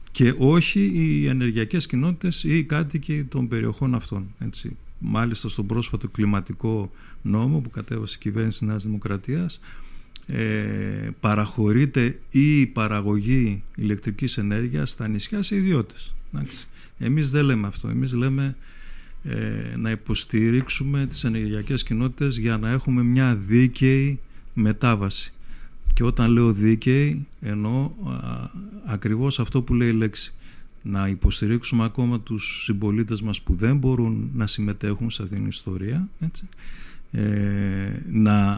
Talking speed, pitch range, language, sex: 125 wpm, 105-135 Hz, Greek, male